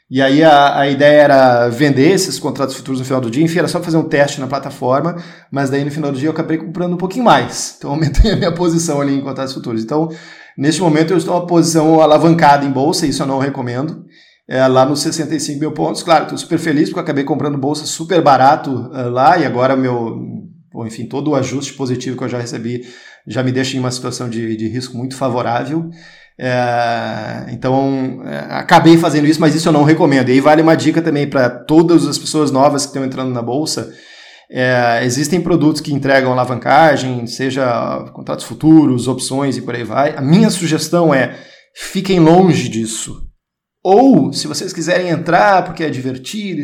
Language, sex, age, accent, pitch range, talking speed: Portuguese, male, 20-39, Brazilian, 130-165 Hz, 195 wpm